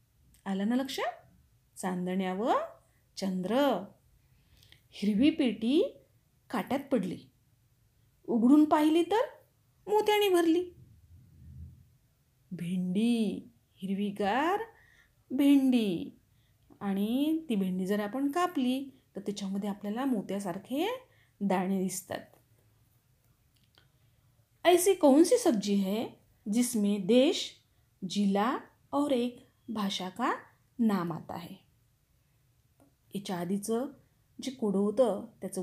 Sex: female